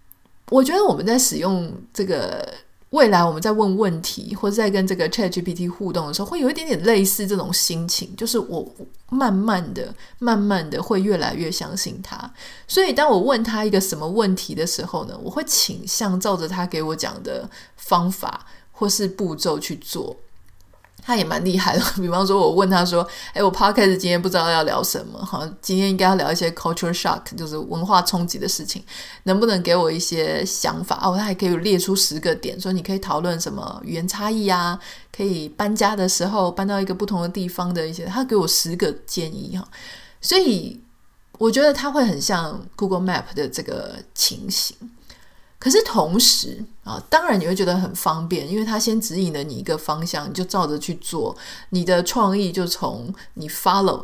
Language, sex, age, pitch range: Chinese, female, 30-49, 175-210 Hz